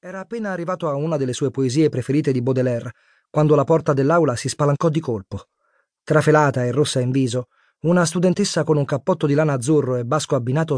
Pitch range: 125-160 Hz